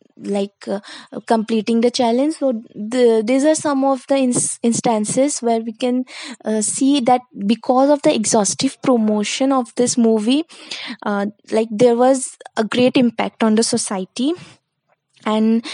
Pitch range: 215-255 Hz